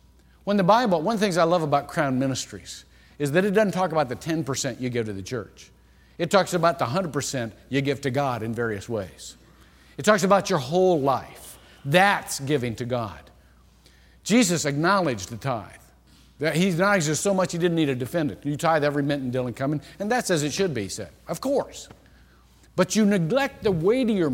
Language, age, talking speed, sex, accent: English, 50-69, 205 wpm, male, American